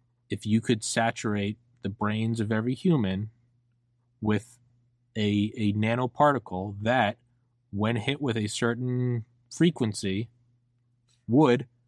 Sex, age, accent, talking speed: male, 20-39, American, 105 wpm